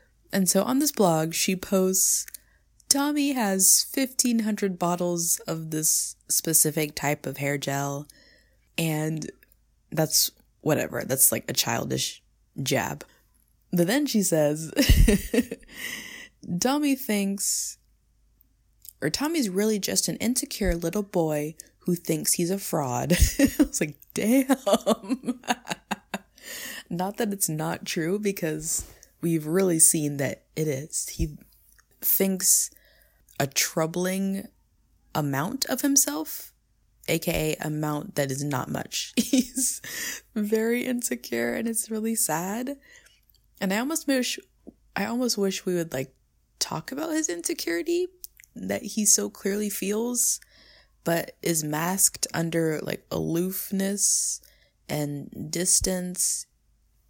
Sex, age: female, 20-39